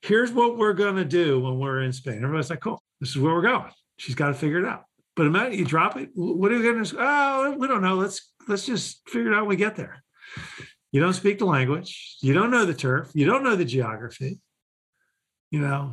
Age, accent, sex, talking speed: 50-69, American, male, 250 wpm